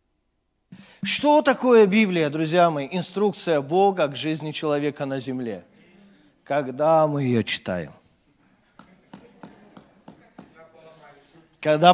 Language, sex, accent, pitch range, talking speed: Russian, male, native, 155-210 Hz, 85 wpm